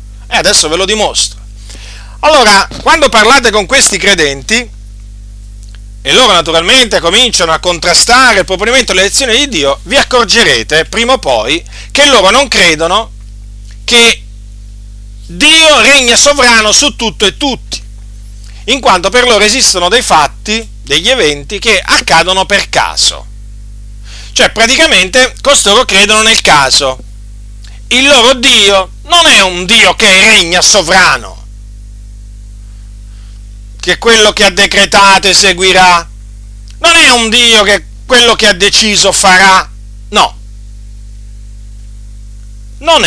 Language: Italian